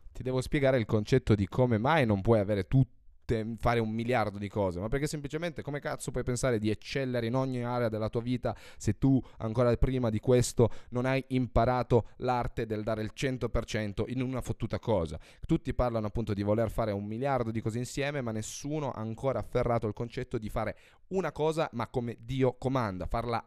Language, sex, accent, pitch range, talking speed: Italian, male, native, 110-130 Hz, 195 wpm